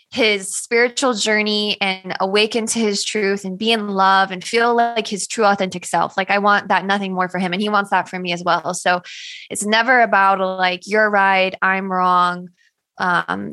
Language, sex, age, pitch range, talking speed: English, female, 20-39, 185-215 Hz, 200 wpm